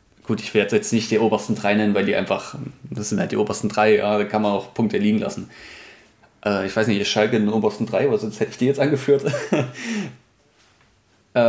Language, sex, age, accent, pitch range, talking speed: German, male, 20-39, German, 105-130 Hz, 225 wpm